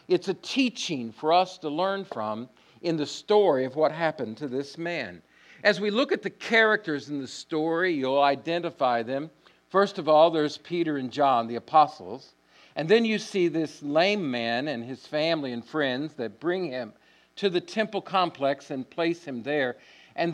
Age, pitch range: 50-69, 135-185 Hz